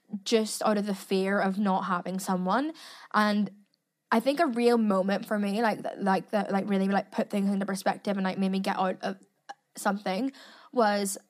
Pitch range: 195-240 Hz